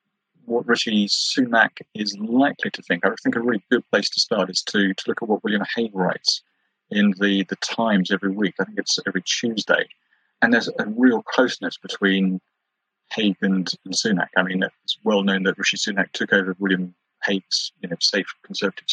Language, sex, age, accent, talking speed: English, male, 30-49, British, 195 wpm